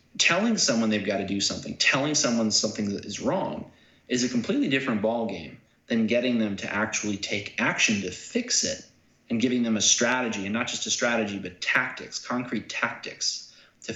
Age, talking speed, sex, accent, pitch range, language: 30-49, 190 wpm, male, American, 105-120 Hz, English